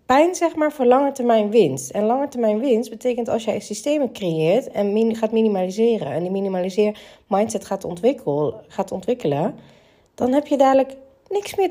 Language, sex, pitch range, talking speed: Dutch, female, 190-255 Hz, 175 wpm